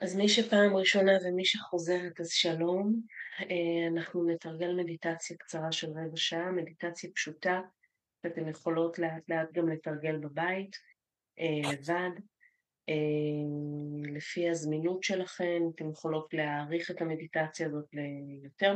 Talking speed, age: 110 wpm, 30-49